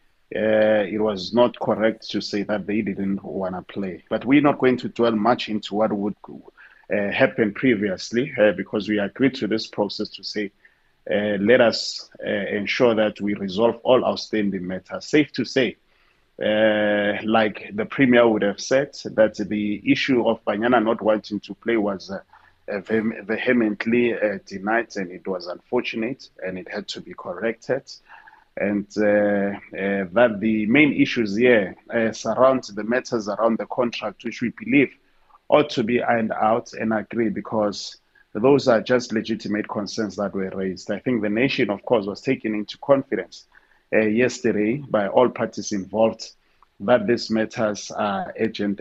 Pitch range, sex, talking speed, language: 105-115 Hz, male, 165 wpm, English